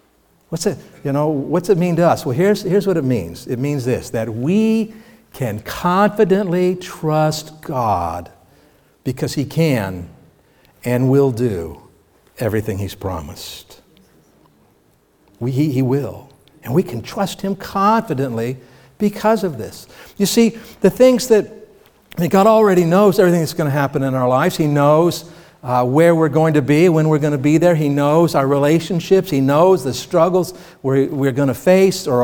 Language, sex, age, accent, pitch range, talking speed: English, male, 60-79, American, 130-185 Hz, 170 wpm